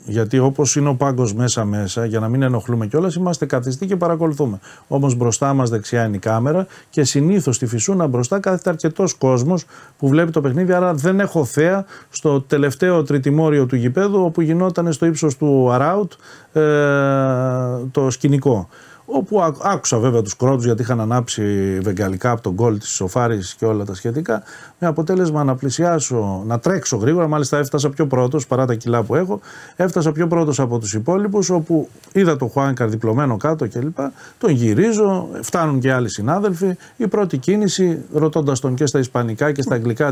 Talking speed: 175 wpm